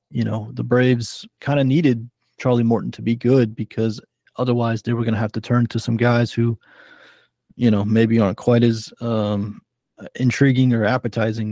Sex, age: male, 20-39